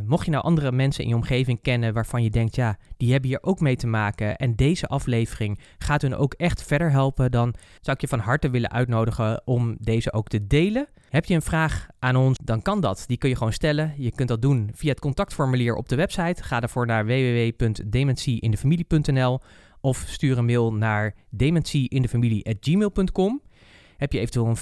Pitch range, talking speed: 120-150 Hz, 195 wpm